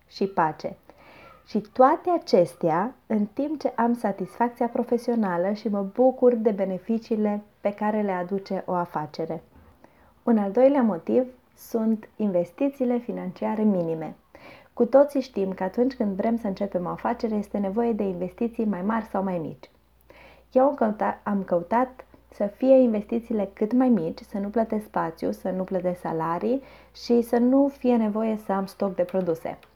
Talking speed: 155 wpm